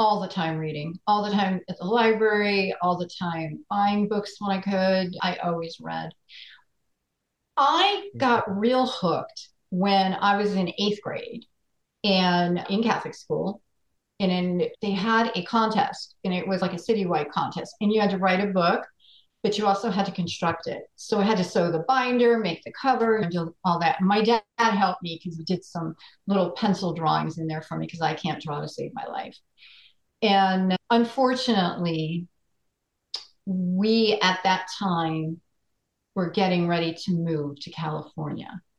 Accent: American